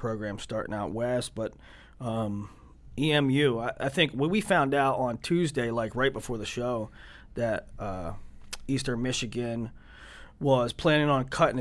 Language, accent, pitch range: English, American, 110-150 Hz